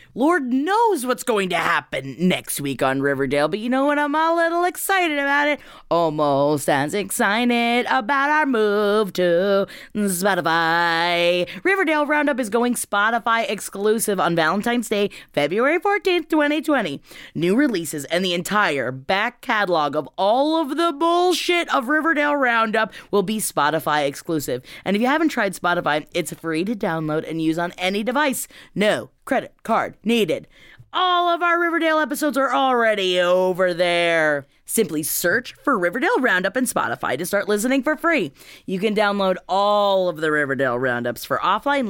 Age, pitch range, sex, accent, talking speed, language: 30-49, 175-290 Hz, female, American, 155 wpm, English